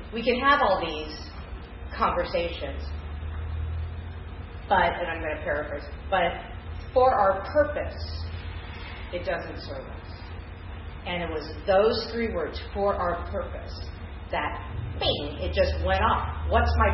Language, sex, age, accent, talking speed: English, female, 40-59, American, 130 wpm